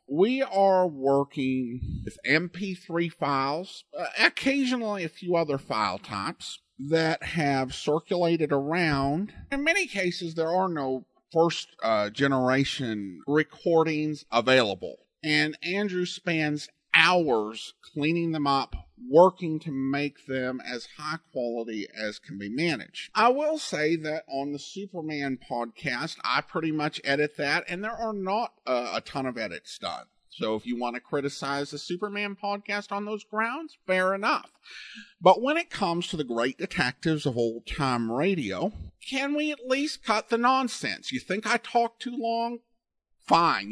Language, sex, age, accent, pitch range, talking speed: English, male, 50-69, American, 140-205 Hz, 145 wpm